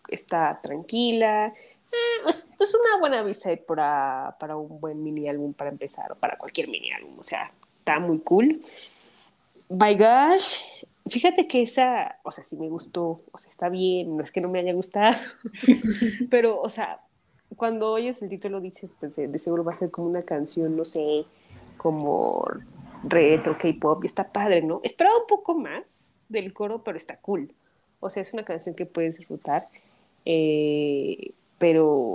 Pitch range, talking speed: 165-230 Hz, 175 wpm